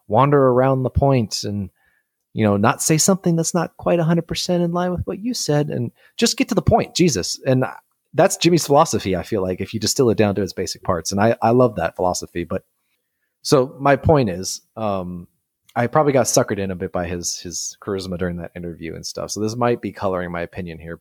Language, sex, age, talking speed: English, male, 30-49, 230 wpm